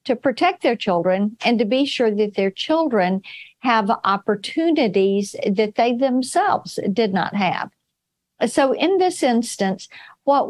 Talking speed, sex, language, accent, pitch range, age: 135 wpm, female, English, American, 200-270 Hz, 50-69